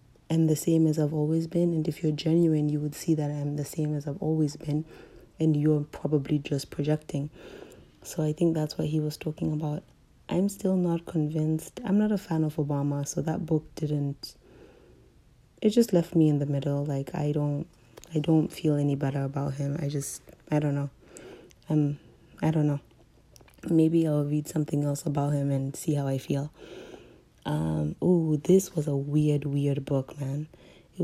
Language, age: English, 30-49